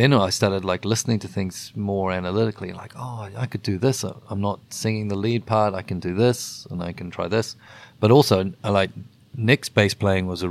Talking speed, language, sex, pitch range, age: 215 wpm, Swedish, male, 100-125 Hz, 30-49